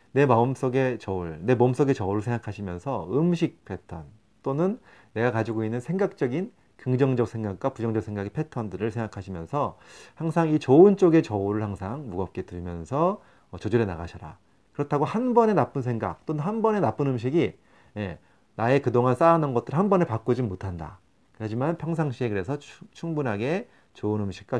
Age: 30-49